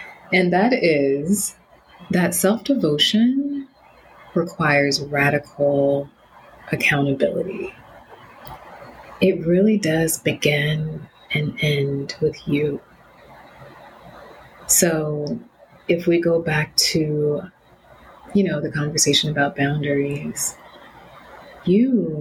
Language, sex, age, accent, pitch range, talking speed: English, female, 30-49, American, 145-190 Hz, 80 wpm